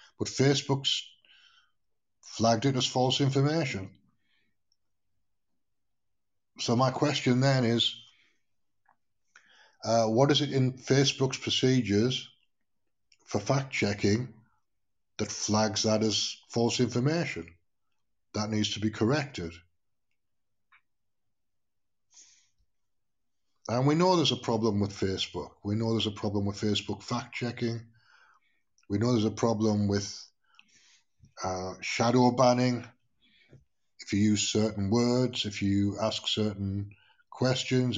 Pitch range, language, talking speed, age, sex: 105-130 Hz, English, 105 wpm, 50-69, male